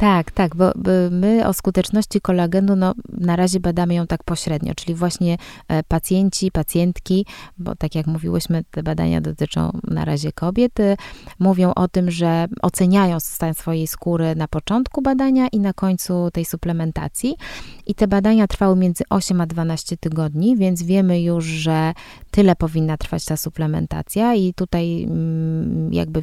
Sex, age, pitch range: female, 20-39, 160-190 Hz